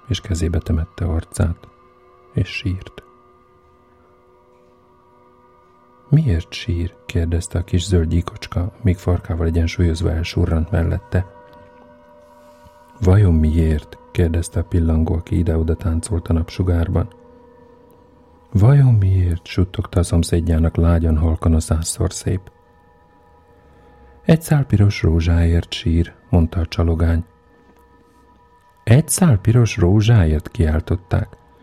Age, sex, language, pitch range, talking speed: 40-59, male, Hungarian, 85-110 Hz, 95 wpm